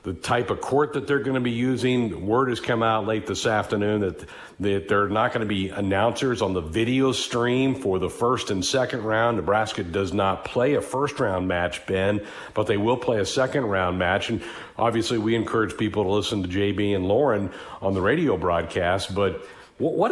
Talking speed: 205 wpm